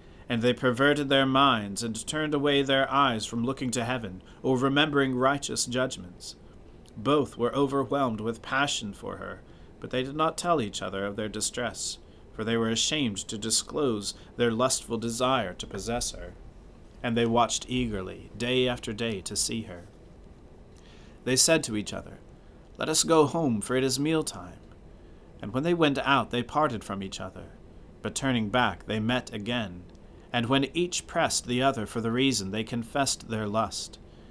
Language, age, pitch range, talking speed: English, 40-59, 100-135 Hz, 175 wpm